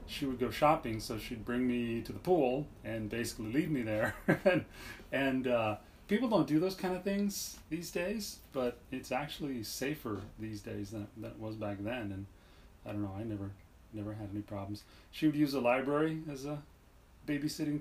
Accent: American